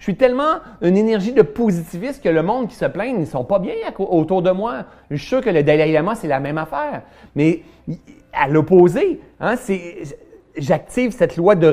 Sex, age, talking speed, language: male, 30-49, 215 wpm, French